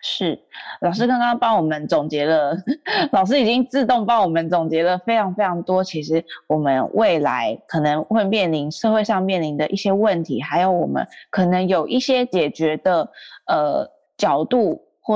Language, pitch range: Chinese, 160-230 Hz